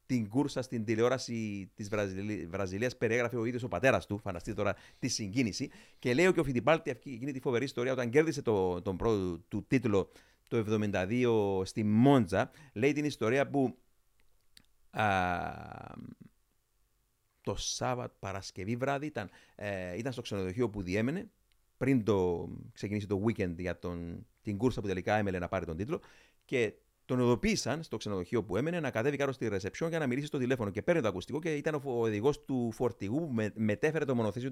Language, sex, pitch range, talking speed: Greek, male, 110-155 Hz, 165 wpm